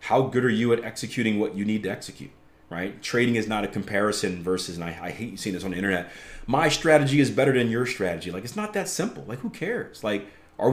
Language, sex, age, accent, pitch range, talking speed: English, male, 30-49, American, 95-145 Hz, 245 wpm